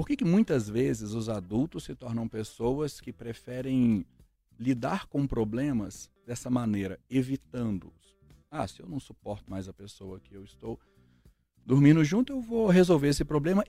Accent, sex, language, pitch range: Brazilian, male, Portuguese, 100-150 Hz